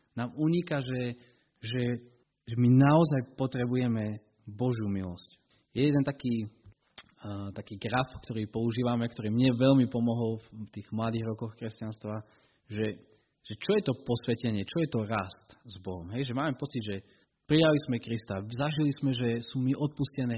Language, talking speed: Slovak, 155 wpm